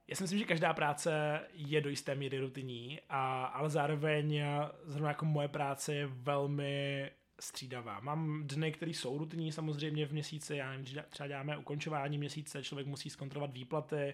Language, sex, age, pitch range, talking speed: Czech, male, 20-39, 140-155 Hz, 155 wpm